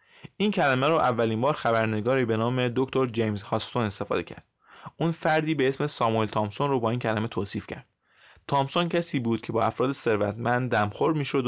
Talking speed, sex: 180 wpm, male